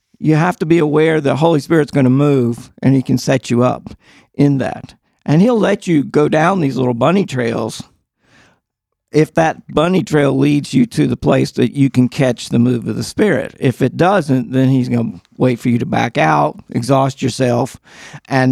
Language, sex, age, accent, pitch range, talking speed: English, male, 50-69, American, 130-165 Hz, 205 wpm